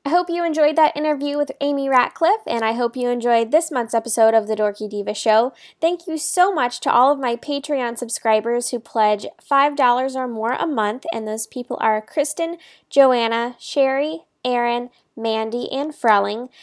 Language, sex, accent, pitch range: English, female, American, 220-285 Hz